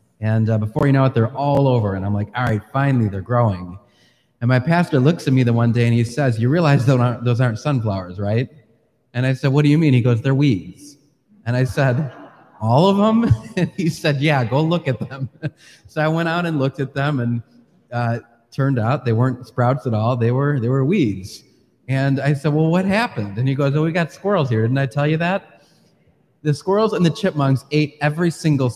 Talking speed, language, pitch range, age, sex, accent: 235 wpm, English, 120-145 Hz, 30-49, male, American